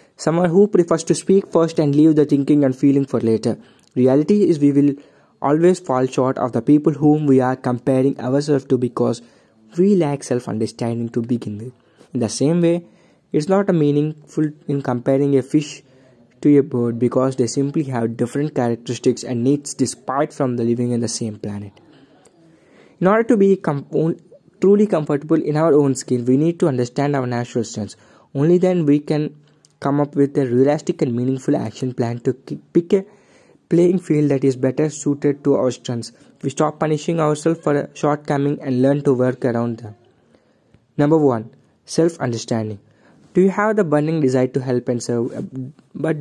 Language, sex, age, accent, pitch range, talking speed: English, male, 20-39, Indian, 125-155 Hz, 180 wpm